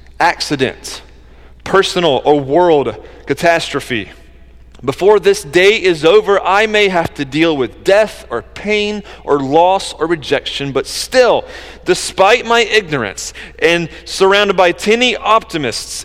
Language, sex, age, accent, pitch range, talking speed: English, male, 30-49, American, 120-185 Hz, 125 wpm